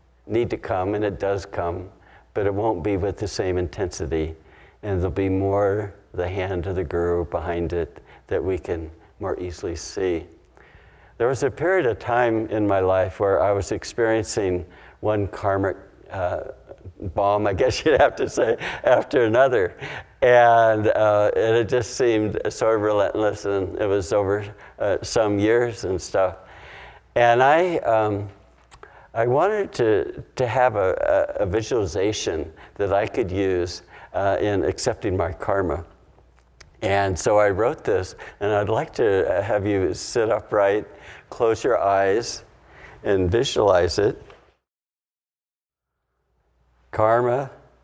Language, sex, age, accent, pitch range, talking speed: English, male, 60-79, American, 85-110 Hz, 145 wpm